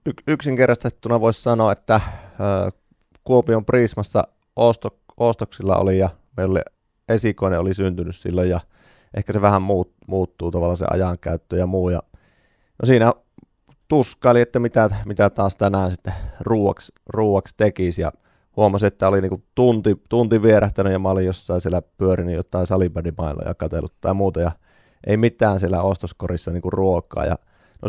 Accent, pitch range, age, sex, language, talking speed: native, 90-105 Hz, 30-49, male, Finnish, 145 wpm